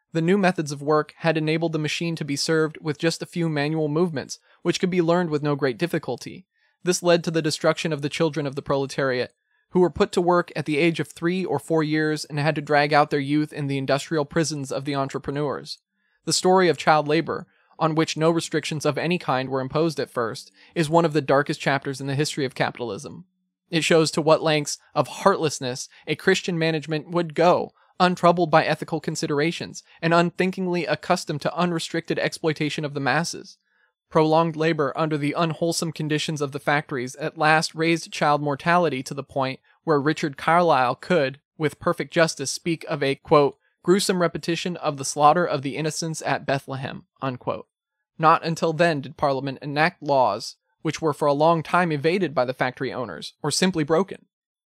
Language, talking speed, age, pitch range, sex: English, 195 wpm, 20-39, 145-170 Hz, male